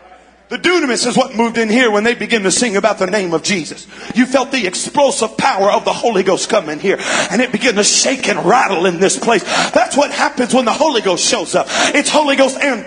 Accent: American